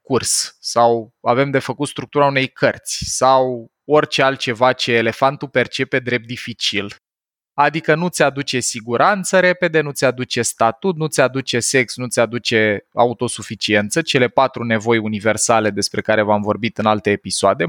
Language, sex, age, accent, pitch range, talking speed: Romanian, male, 20-39, native, 115-170 Hz, 155 wpm